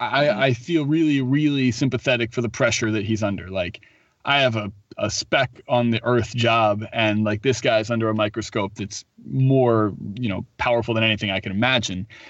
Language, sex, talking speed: English, male, 190 wpm